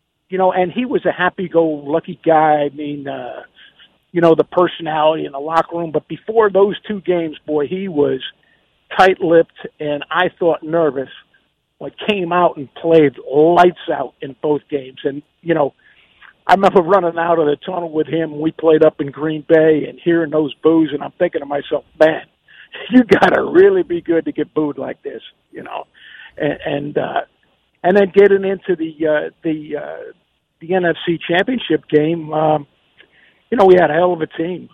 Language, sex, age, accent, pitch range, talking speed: English, male, 50-69, American, 150-180 Hz, 190 wpm